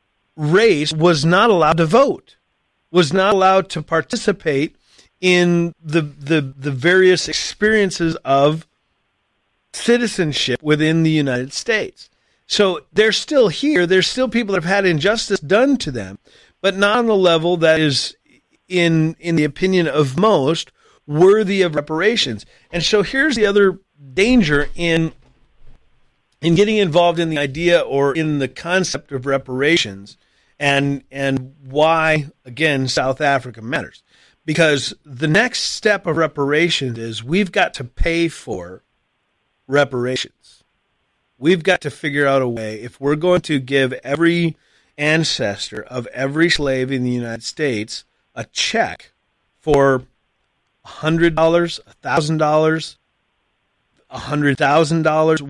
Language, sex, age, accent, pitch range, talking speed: English, male, 40-59, American, 135-180 Hz, 130 wpm